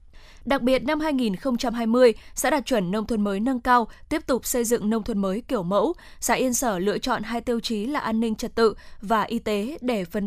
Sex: female